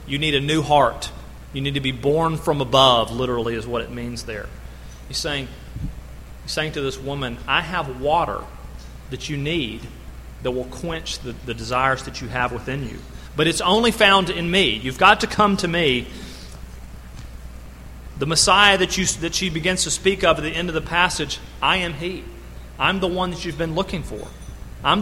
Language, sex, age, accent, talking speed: English, male, 40-59, American, 195 wpm